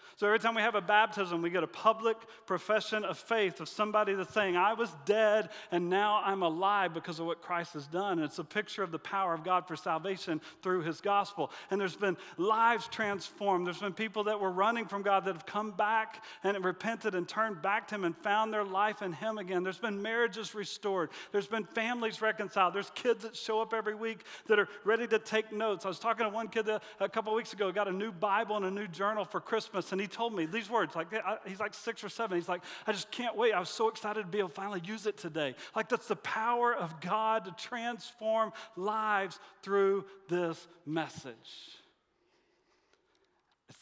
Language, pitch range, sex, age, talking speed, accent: English, 185-220 Hz, male, 40-59, 220 wpm, American